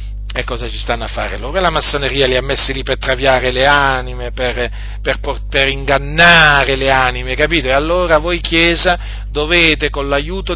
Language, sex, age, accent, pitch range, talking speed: Italian, male, 40-59, native, 120-165 Hz, 175 wpm